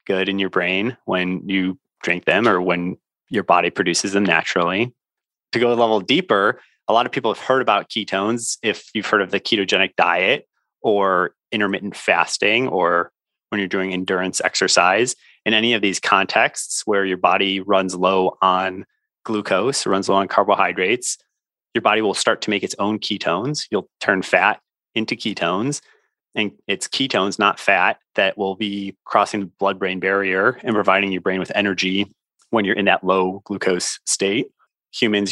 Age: 30-49